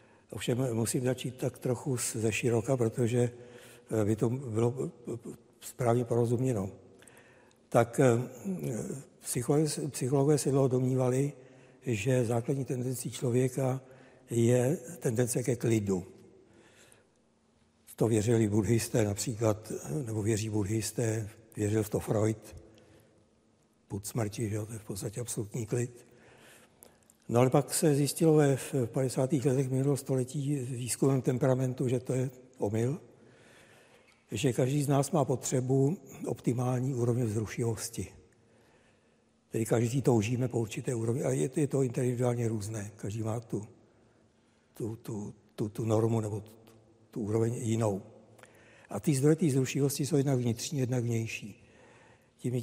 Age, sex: 60-79, male